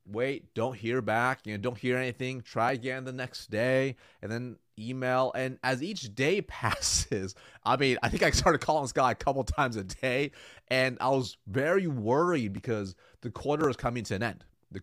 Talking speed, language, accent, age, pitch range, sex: 200 wpm, English, American, 30-49, 110-140 Hz, male